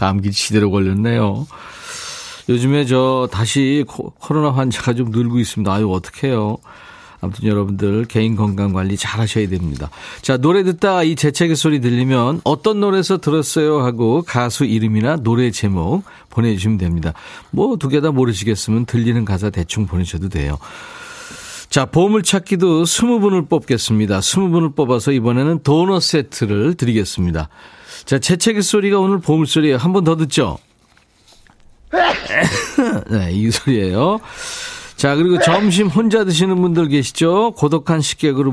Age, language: 40-59, Korean